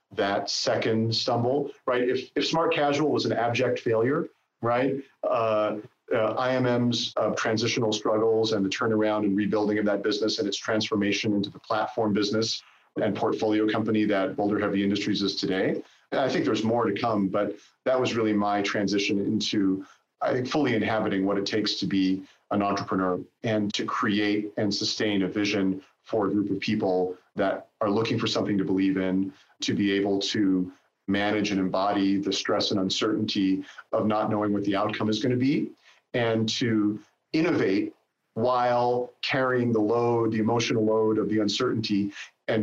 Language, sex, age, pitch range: English, male, 40-59, 100-115 Hz